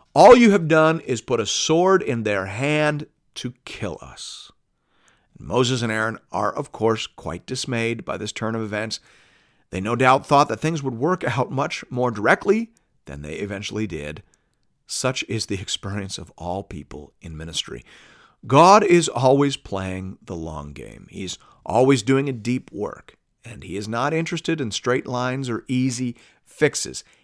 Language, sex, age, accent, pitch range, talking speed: English, male, 50-69, American, 100-135 Hz, 165 wpm